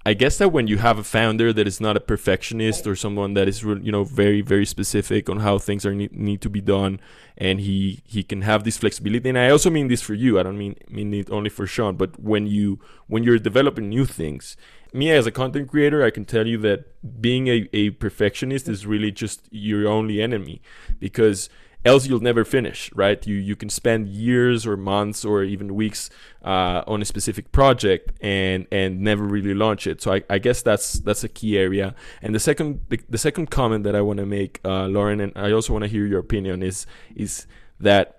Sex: male